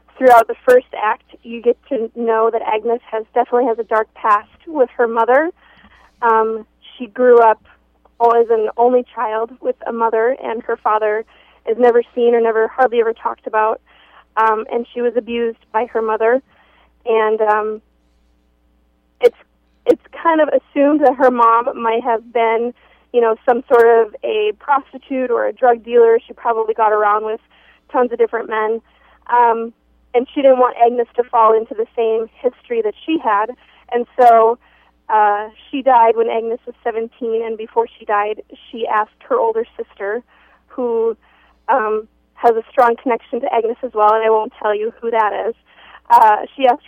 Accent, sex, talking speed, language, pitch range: American, female, 175 wpm, English, 225-255 Hz